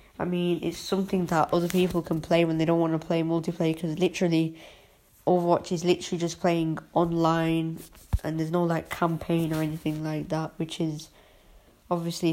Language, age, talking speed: English, 20-39, 175 wpm